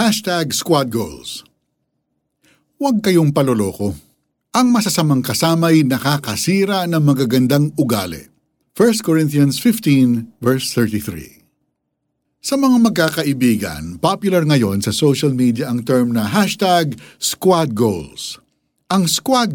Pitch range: 110-165 Hz